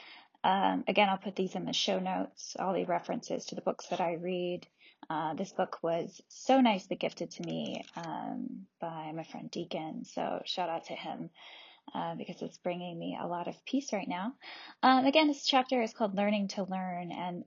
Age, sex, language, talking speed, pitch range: 10-29, female, English, 200 wpm, 195-245 Hz